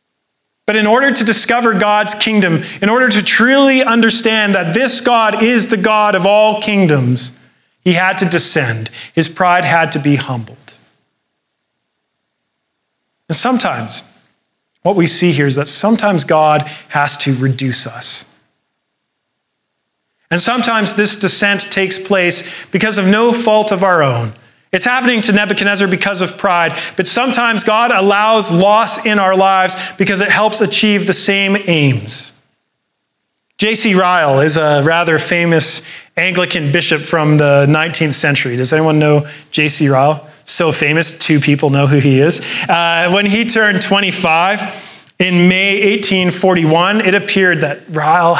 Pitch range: 155-210 Hz